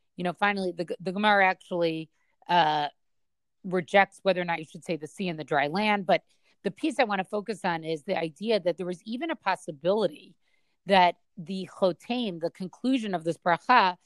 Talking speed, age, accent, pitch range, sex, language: 195 wpm, 30-49, American, 170-205 Hz, female, English